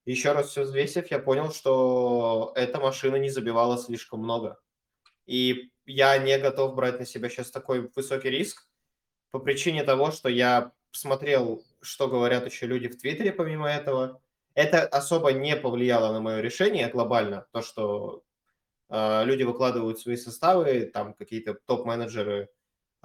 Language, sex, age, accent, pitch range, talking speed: Russian, male, 20-39, native, 115-135 Hz, 145 wpm